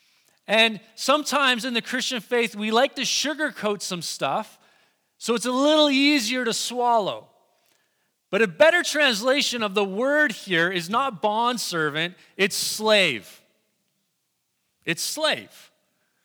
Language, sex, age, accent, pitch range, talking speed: English, male, 30-49, American, 190-250 Hz, 125 wpm